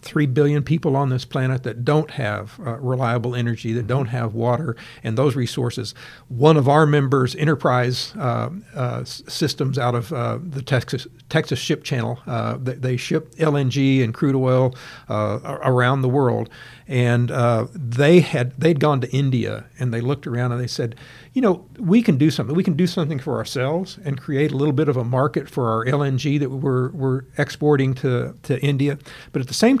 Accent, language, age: American, English, 60-79